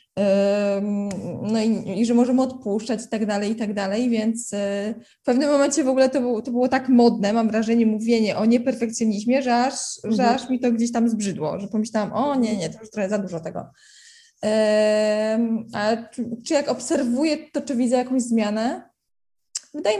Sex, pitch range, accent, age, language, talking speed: female, 205-255 Hz, native, 20-39, Polish, 175 wpm